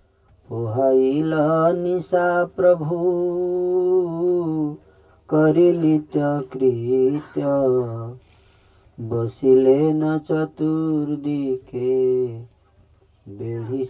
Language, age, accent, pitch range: Hindi, 40-59, native, 125-180 Hz